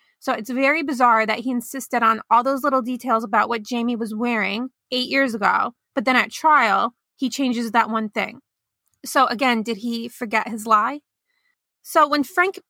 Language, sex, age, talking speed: English, female, 20-39, 185 wpm